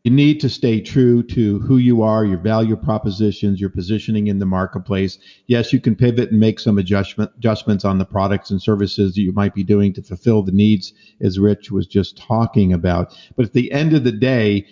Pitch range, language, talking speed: 100-125 Hz, English, 215 wpm